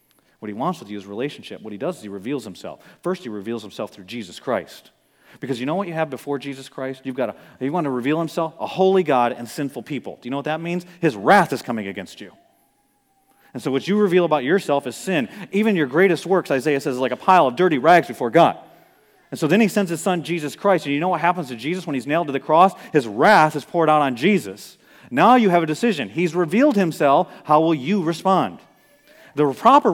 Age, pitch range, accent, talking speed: 40-59, 135-190 Hz, American, 245 wpm